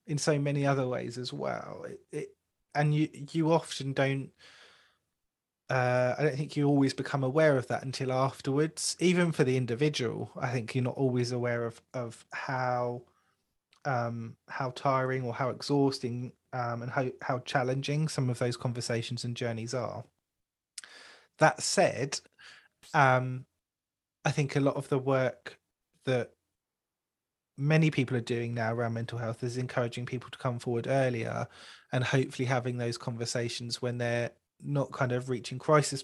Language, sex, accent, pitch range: English, male, British, 120-140 Hz